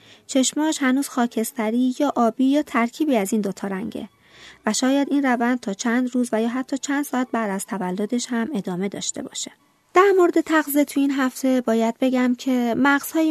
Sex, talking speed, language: female, 180 wpm, Persian